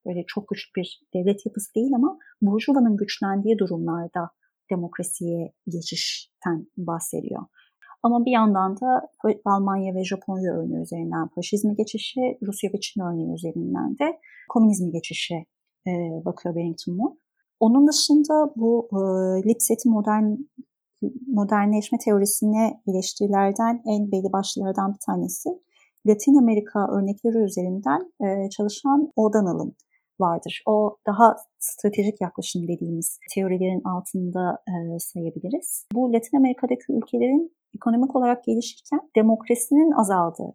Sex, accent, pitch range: female, native, 190-250 Hz